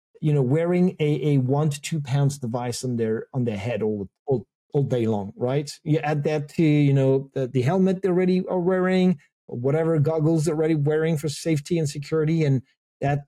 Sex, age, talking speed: male, 30-49, 205 wpm